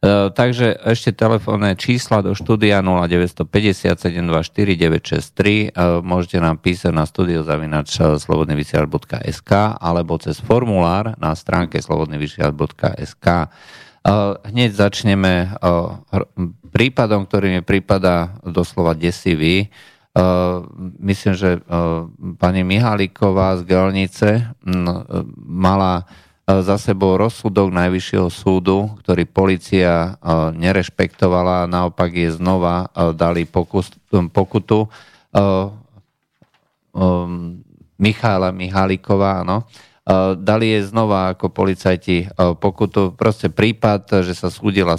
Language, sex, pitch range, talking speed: Slovak, male, 90-105 Hz, 80 wpm